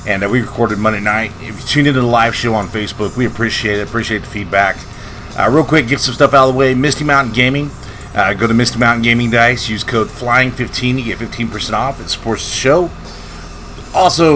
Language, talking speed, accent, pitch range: English, 220 wpm, American, 105-130 Hz